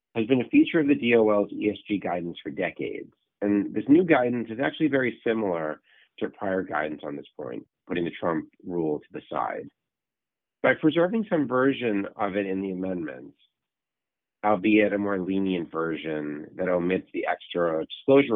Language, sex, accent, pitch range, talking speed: English, male, American, 90-130 Hz, 165 wpm